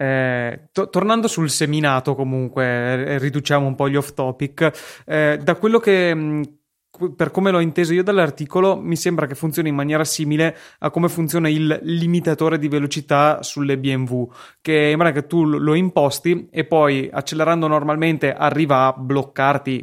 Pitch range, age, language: 130-155 Hz, 20-39, Italian